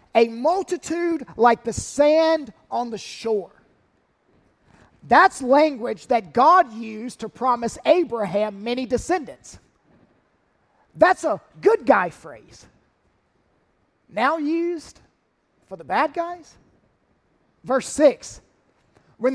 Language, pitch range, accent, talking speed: English, 215-290 Hz, American, 100 wpm